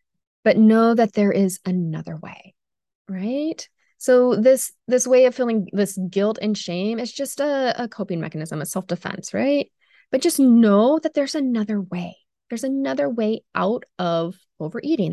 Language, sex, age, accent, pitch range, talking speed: English, female, 20-39, American, 180-245 Hz, 160 wpm